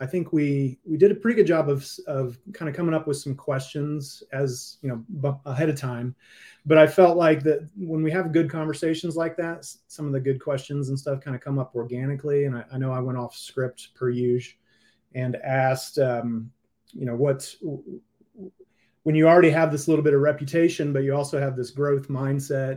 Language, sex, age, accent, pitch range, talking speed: English, male, 30-49, American, 125-155 Hz, 210 wpm